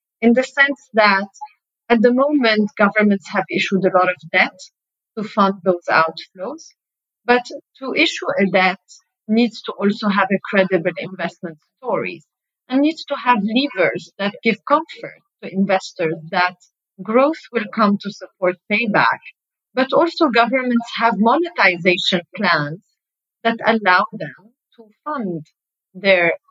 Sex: female